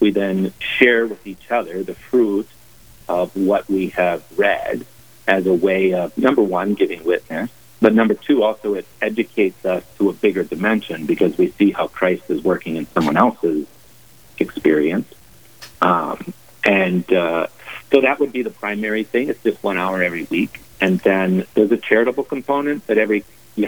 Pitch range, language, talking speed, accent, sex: 90-110 Hz, English, 170 wpm, American, male